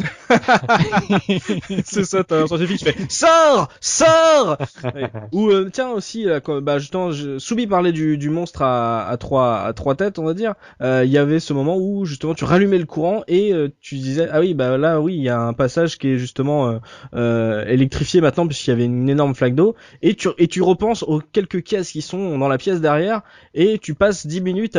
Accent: French